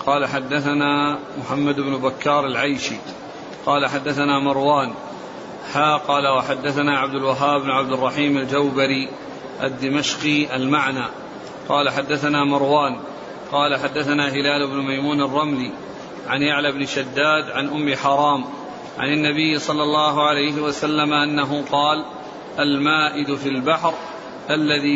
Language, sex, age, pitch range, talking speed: Arabic, male, 40-59, 140-150 Hz, 115 wpm